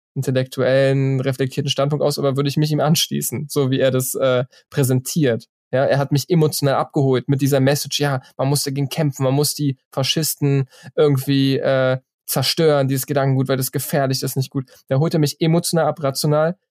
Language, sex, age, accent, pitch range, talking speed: German, male, 20-39, German, 135-150 Hz, 185 wpm